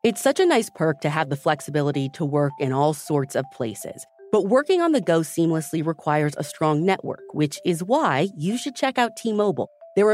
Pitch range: 145-210 Hz